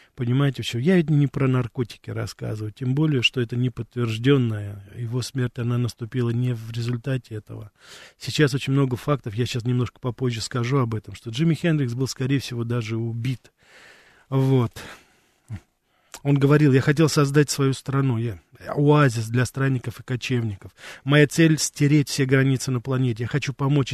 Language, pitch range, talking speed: Russian, 120-135 Hz, 160 wpm